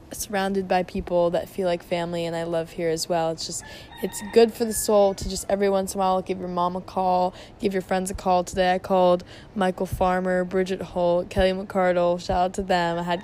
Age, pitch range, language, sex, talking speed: 10-29, 180-215 Hz, English, female, 235 wpm